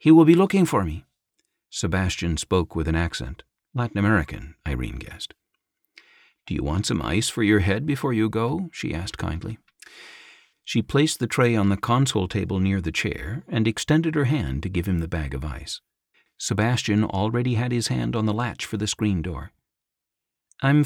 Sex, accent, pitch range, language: male, American, 90-130 Hz, English